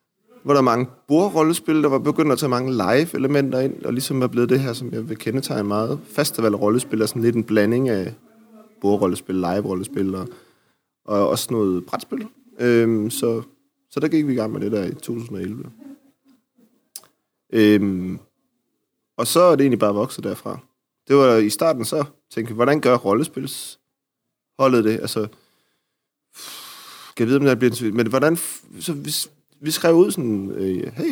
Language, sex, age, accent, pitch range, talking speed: Danish, male, 30-49, native, 105-145 Hz, 175 wpm